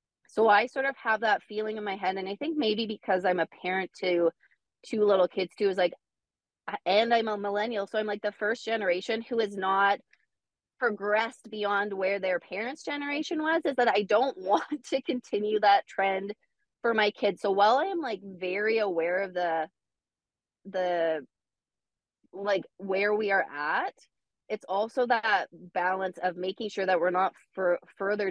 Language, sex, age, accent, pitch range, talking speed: English, female, 20-39, American, 180-240 Hz, 180 wpm